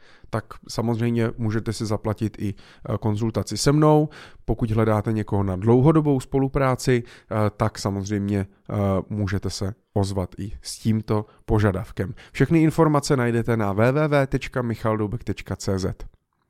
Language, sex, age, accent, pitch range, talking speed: Czech, male, 30-49, native, 105-130 Hz, 105 wpm